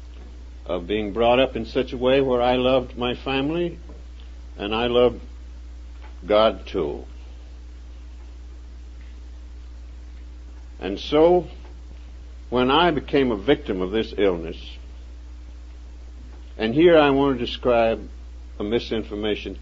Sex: male